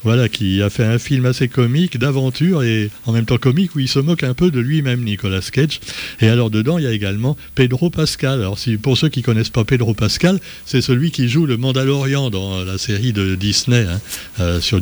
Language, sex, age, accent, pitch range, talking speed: French, male, 60-79, French, 110-145 Hz, 225 wpm